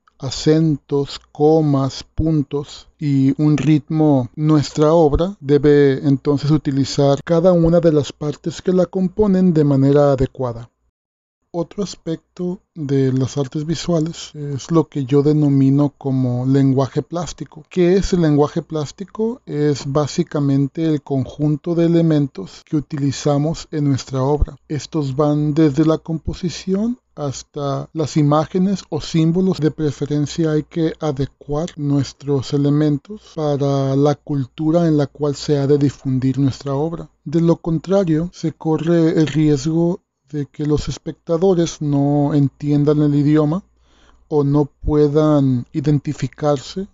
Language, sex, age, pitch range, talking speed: Spanish, male, 40-59, 140-160 Hz, 130 wpm